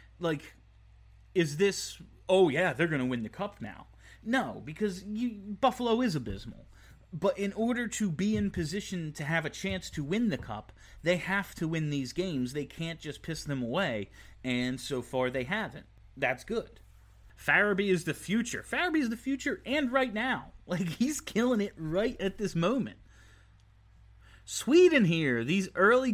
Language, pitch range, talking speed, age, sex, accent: English, 125-195 Hz, 170 wpm, 30-49, male, American